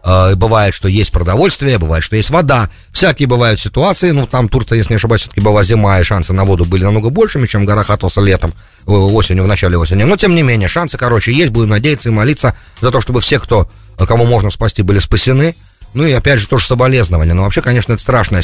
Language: English